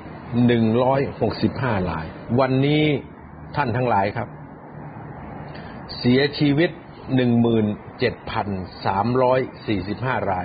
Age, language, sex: 60-79, Thai, male